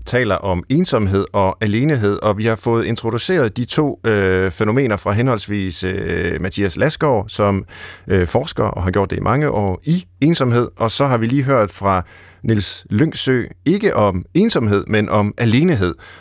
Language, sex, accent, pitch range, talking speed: Danish, male, native, 95-130 Hz, 170 wpm